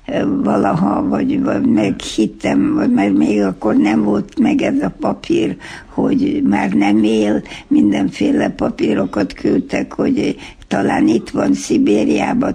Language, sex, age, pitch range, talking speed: Hungarian, female, 60-79, 220-280 Hz, 130 wpm